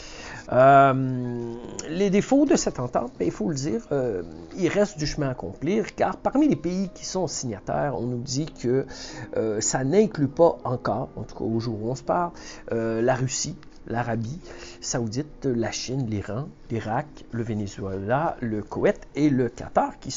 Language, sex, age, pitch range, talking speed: French, male, 50-69, 120-175 Hz, 180 wpm